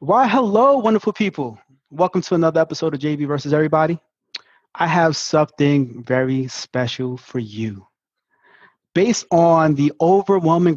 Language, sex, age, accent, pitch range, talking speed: English, male, 30-49, American, 140-180 Hz, 130 wpm